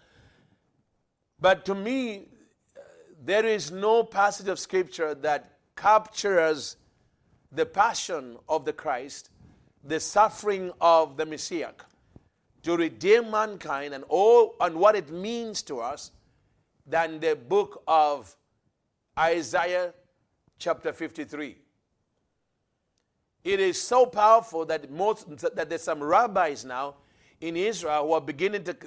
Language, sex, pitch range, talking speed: English, male, 155-215 Hz, 115 wpm